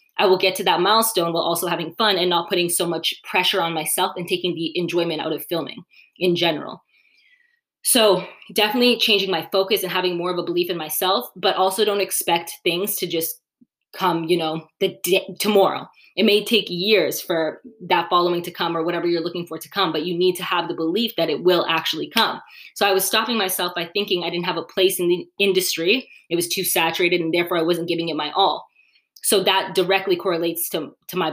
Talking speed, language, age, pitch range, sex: 220 wpm, English, 20-39, 170-195 Hz, female